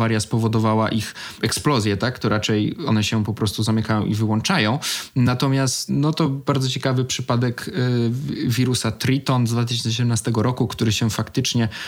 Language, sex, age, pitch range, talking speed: Polish, male, 20-39, 110-125 Hz, 135 wpm